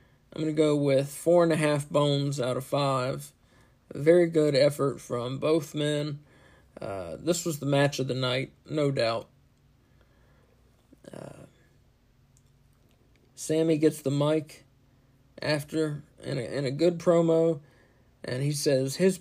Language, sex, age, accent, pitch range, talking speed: English, male, 50-69, American, 130-155 Hz, 145 wpm